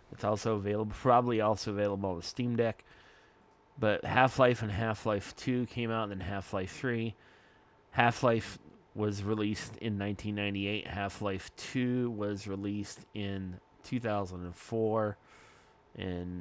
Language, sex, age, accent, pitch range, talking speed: English, male, 30-49, American, 100-120 Hz, 140 wpm